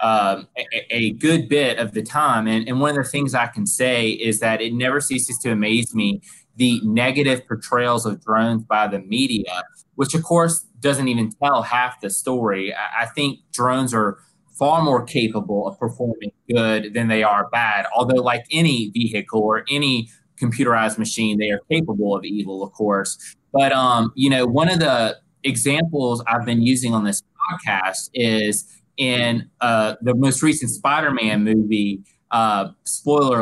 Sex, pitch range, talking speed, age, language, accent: male, 110-140 Hz, 170 wpm, 20-39, English, American